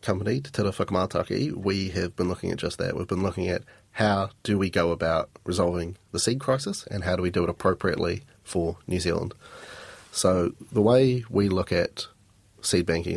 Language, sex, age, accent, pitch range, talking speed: English, male, 30-49, Australian, 90-105 Hz, 185 wpm